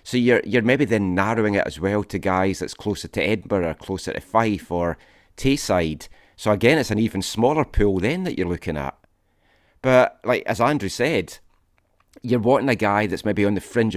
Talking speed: 200 wpm